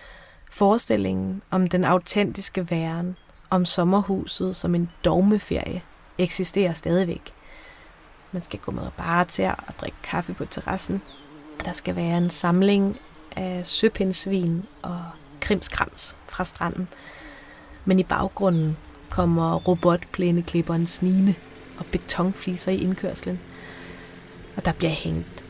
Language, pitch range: Danish, 165-195 Hz